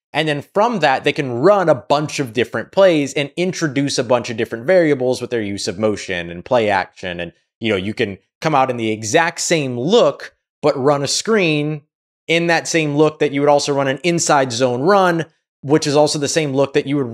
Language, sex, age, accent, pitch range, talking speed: English, male, 30-49, American, 115-150 Hz, 230 wpm